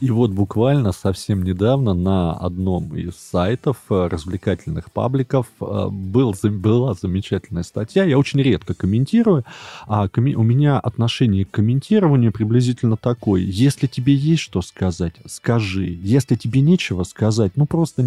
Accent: native